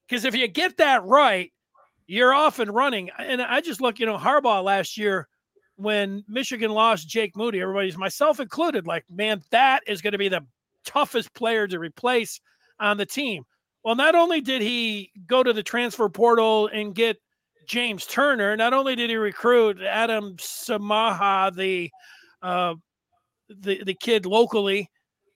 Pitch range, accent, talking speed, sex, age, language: 200-265 Hz, American, 165 wpm, male, 40-59, English